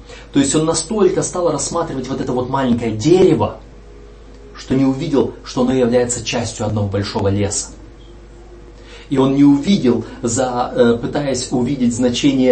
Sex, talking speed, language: male, 135 wpm, Russian